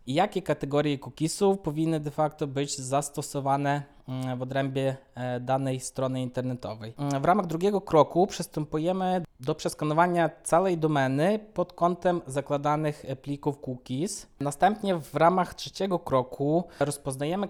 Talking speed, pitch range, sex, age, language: 115 wpm, 135-170 Hz, male, 20-39, Polish